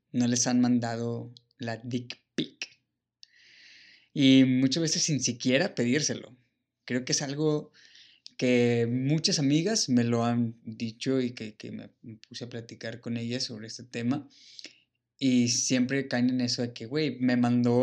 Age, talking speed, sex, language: 20-39, 155 wpm, male, Spanish